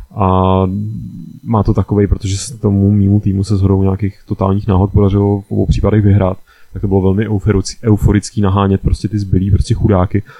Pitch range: 100-105 Hz